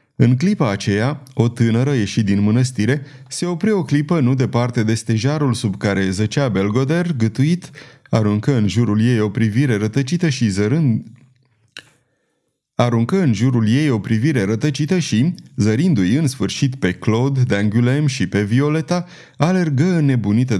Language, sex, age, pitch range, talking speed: Romanian, male, 30-49, 115-145 Hz, 150 wpm